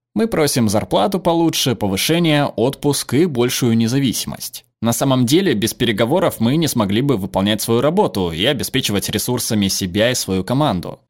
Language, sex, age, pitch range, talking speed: Russian, male, 20-39, 105-150 Hz, 150 wpm